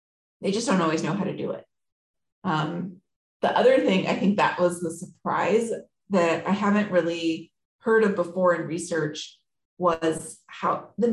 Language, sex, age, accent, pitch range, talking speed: English, female, 30-49, American, 170-210 Hz, 165 wpm